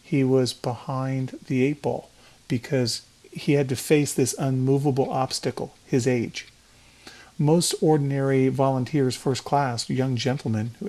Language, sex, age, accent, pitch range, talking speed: English, male, 40-59, American, 120-145 Hz, 130 wpm